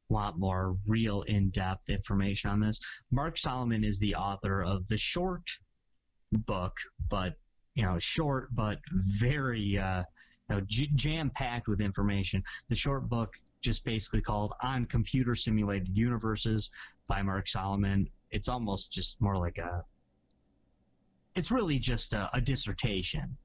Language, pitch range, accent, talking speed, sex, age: English, 95-125 Hz, American, 140 wpm, male, 30-49